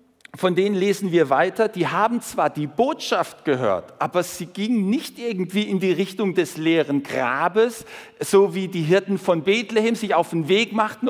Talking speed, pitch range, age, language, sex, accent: 180 wpm, 175-220 Hz, 50-69, German, male, German